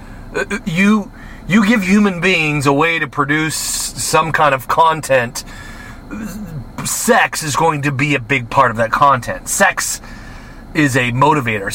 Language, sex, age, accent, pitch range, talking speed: English, male, 40-59, American, 120-160 Hz, 145 wpm